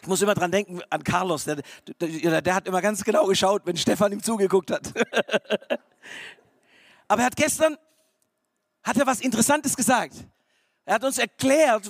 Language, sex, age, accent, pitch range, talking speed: German, male, 50-69, German, 205-280 Hz, 170 wpm